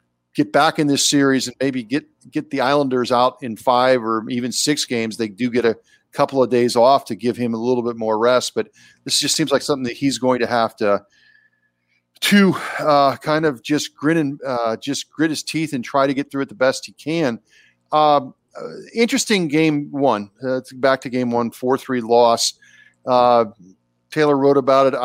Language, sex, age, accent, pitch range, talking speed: English, male, 40-59, American, 120-145 Hz, 205 wpm